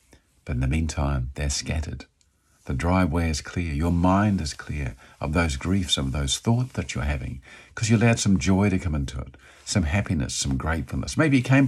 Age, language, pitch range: 50-69, English, 70-100 Hz